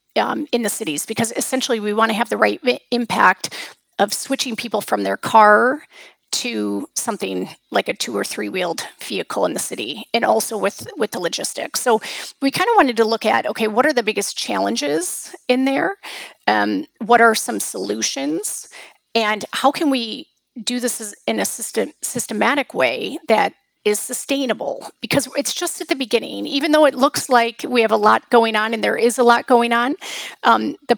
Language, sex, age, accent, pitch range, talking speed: English, female, 30-49, American, 220-275 Hz, 185 wpm